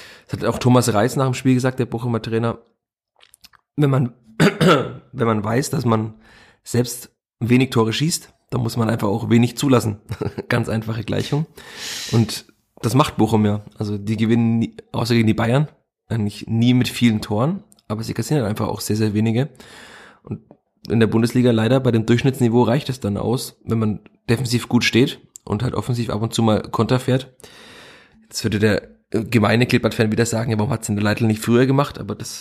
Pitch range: 110-125 Hz